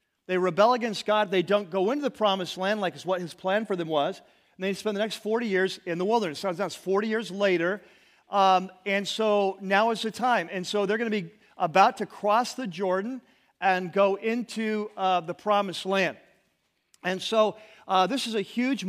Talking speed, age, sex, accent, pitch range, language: 210 wpm, 40-59, male, American, 185-220 Hz, English